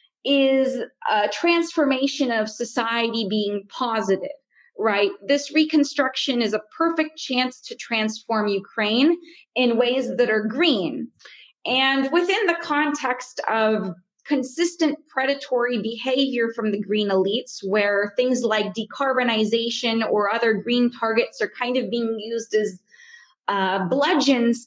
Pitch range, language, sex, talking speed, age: 220-280 Hz, English, female, 120 wpm, 20-39